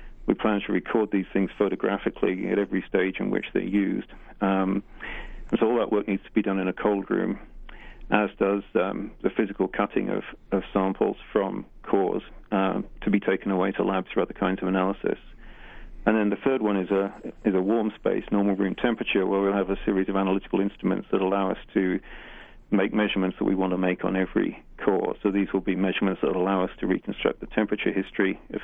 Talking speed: 210 wpm